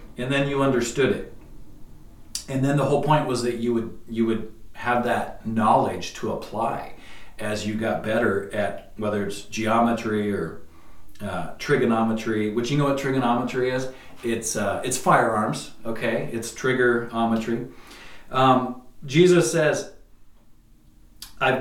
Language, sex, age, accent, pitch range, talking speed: English, male, 40-59, American, 115-150 Hz, 135 wpm